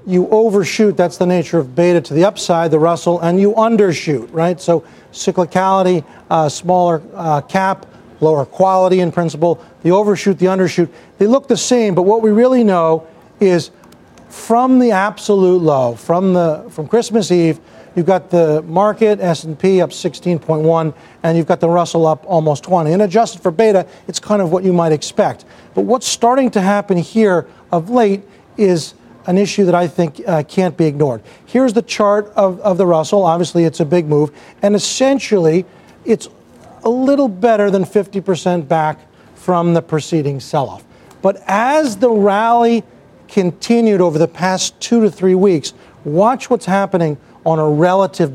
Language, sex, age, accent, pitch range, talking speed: English, male, 40-59, American, 165-205 Hz, 170 wpm